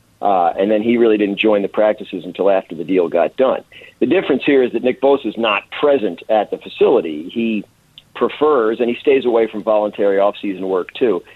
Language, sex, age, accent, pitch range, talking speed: English, male, 50-69, American, 100-130 Hz, 205 wpm